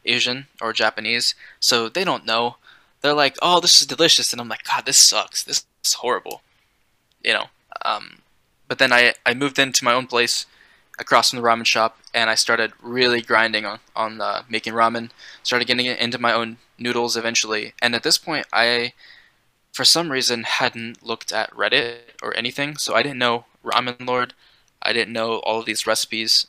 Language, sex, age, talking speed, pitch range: English, male, 10-29, 190 wpm, 110-125 Hz